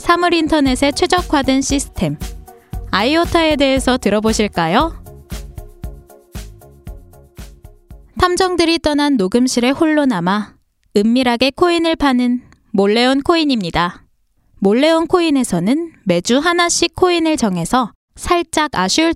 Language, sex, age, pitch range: Korean, female, 20-39, 205-325 Hz